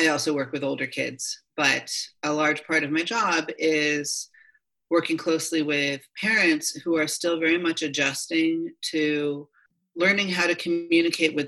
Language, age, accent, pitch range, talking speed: English, 30-49, American, 150-180 Hz, 155 wpm